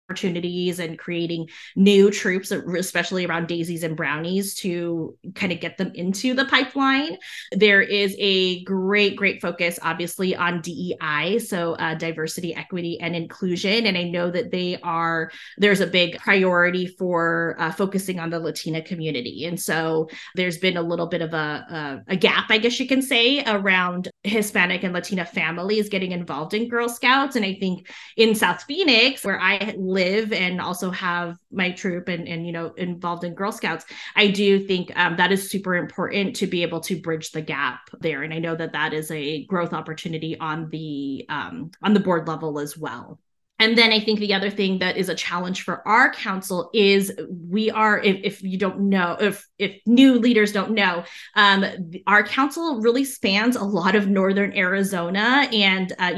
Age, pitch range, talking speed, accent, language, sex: 20-39, 170-205 Hz, 185 wpm, American, English, female